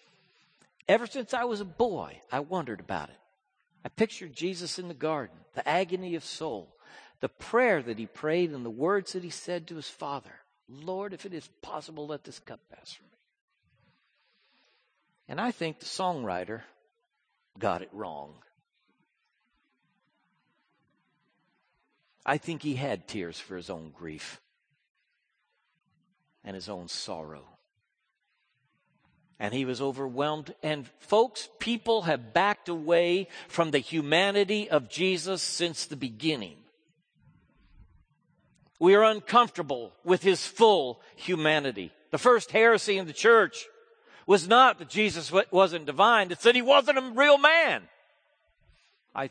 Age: 60-79